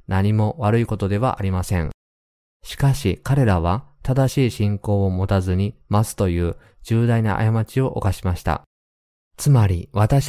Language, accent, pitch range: Japanese, native, 95-115 Hz